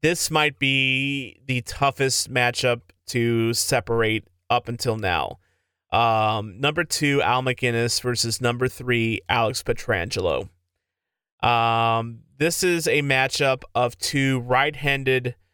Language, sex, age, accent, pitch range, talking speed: English, male, 30-49, American, 115-135 Hz, 110 wpm